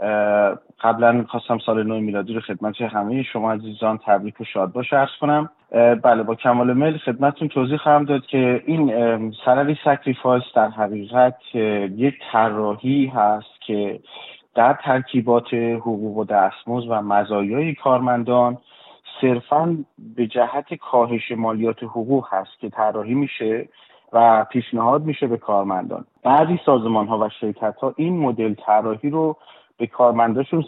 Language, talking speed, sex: Persian, 135 wpm, male